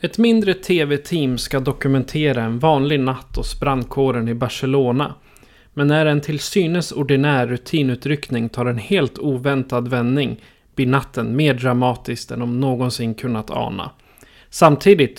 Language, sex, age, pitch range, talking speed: Swedish, male, 30-49, 130-155 Hz, 135 wpm